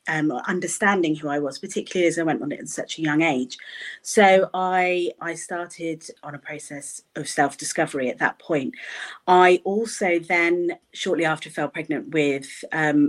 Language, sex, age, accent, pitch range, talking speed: English, female, 30-49, British, 155-185 Hz, 170 wpm